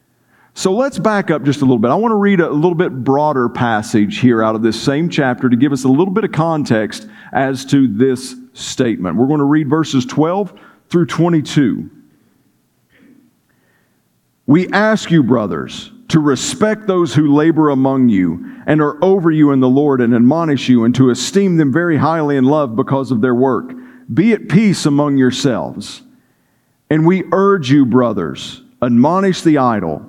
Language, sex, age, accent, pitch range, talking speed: English, male, 50-69, American, 135-195 Hz, 180 wpm